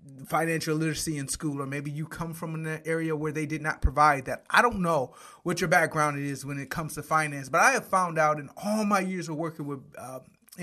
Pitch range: 150-185 Hz